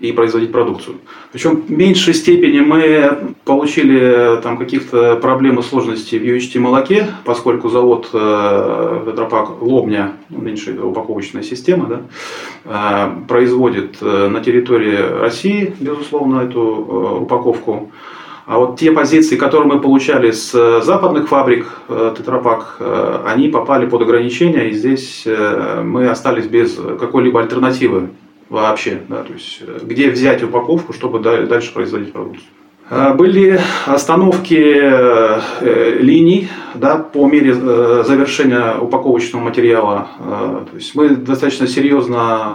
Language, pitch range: Russian, 115-160 Hz